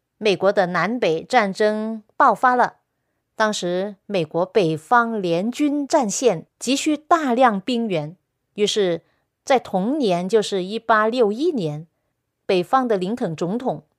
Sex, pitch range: female, 180-255 Hz